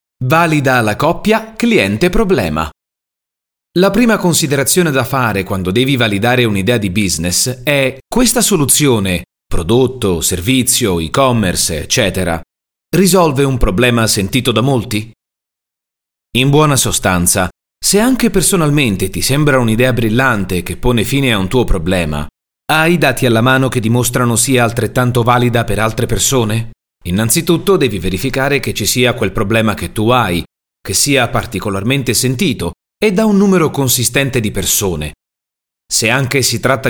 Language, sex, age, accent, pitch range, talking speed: Italian, male, 30-49, native, 100-140 Hz, 135 wpm